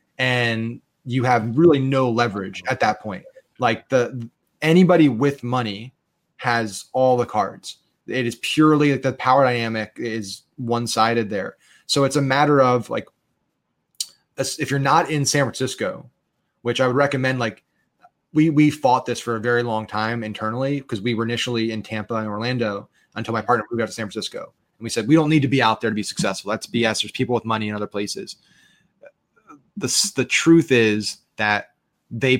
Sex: male